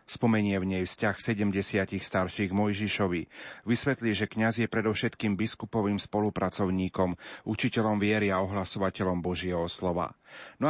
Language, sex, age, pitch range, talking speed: Slovak, male, 30-49, 95-115 Hz, 120 wpm